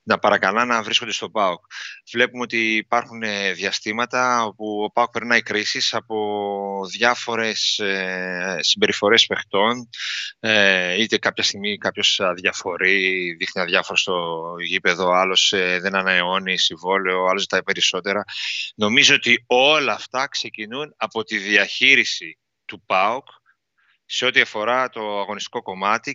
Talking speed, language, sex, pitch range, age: 115 wpm, Greek, male, 100-125 Hz, 30-49